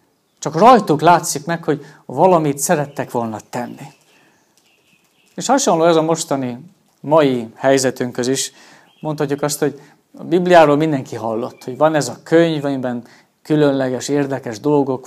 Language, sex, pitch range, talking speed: Hungarian, male, 140-175 Hz, 130 wpm